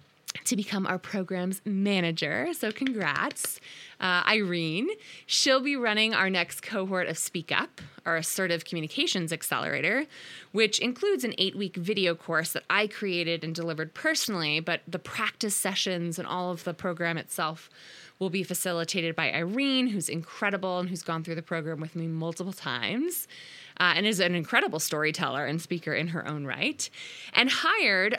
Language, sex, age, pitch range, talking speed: English, female, 20-39, 170-220 Hz, 160 wpm